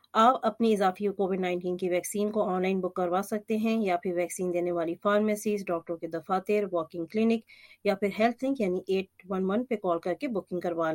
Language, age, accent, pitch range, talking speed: English, 30-49, Indian, 180-220 Hz, 185 wpm